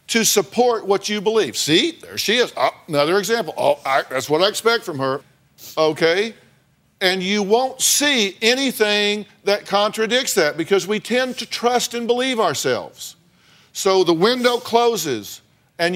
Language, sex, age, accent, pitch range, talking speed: English, male, 50-69, American, 185-235 Hz, 150 wpm